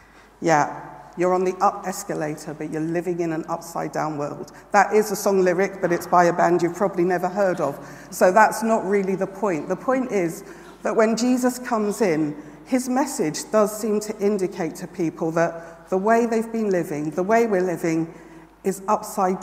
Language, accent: English, British